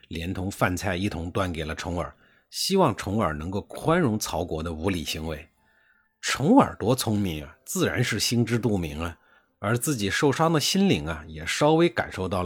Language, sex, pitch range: Chinese, male, 85-130 Hz